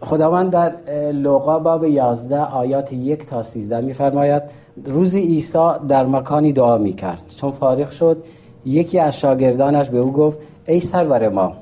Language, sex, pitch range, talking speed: Persian, male, 115-150 Hz, 145 wpm